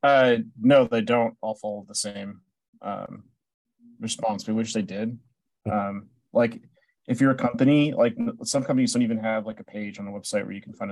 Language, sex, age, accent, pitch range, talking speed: English, male, 30-49, American, 110-150 Hz, 200 wpm